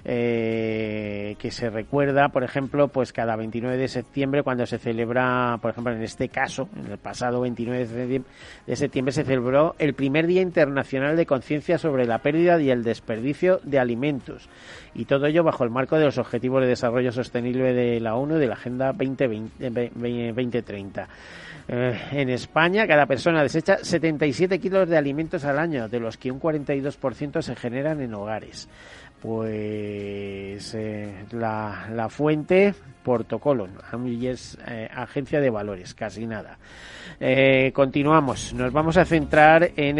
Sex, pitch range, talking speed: male, 115-145 Hz, 155 wpm